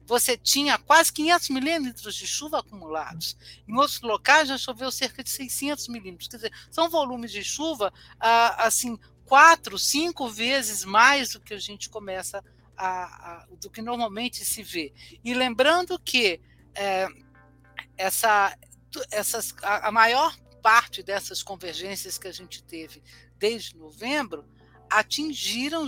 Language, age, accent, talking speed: Portuguese, 60-79, Brazilian, 135 wpm